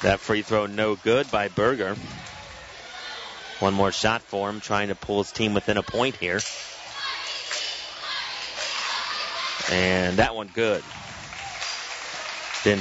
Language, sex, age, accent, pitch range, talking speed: English, male, 30-49, American, 100-120 Hz, 120 wpm